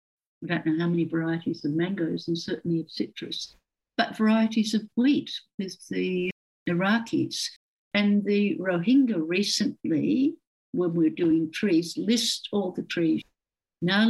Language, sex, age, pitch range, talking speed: English, female, 60-79, 165-225 Hz, 140 wpm